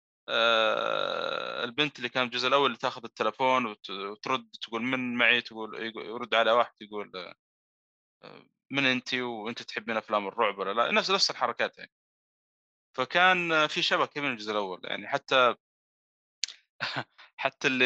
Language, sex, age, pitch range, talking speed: Arabic, male, 30-49, 110-150 Hz, 125 wpm